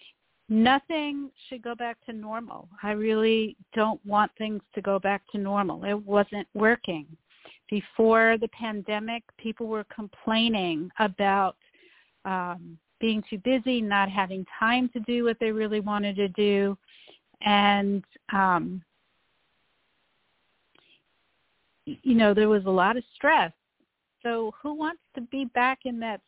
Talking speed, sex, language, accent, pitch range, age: 135 wpm, female, English, American, 205-240 Hz, 50-69